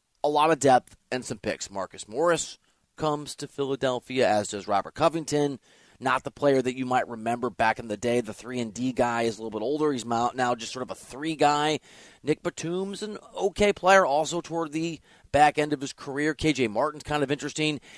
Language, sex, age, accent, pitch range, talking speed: English, male, 30-49, American, 120-150 Hz, 210 wpm